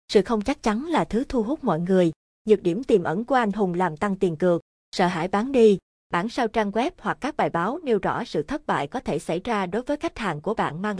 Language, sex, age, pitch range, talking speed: Vietnamese, female, 20-39, 175-230 Hz, 265 wpm